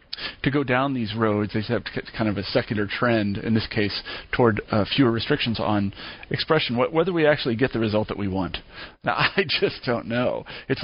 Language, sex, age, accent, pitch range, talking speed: English, male, 40-59, American, 105-130 Hz, 215 wpm